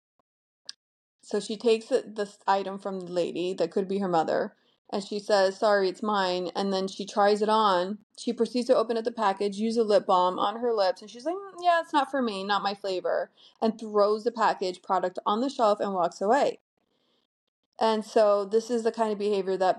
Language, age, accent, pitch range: English, 30-49, American, 185-220 Hz